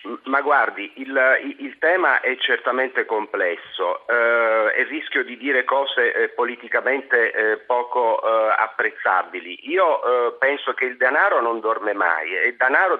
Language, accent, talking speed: Italian, native, 150 wpm